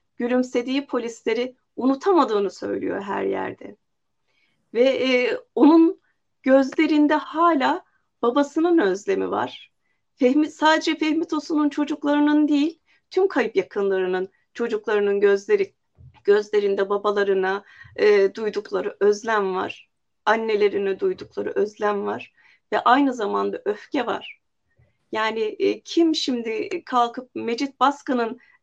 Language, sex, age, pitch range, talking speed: German, female, 30-49, 220-335 Hz, 100 wpm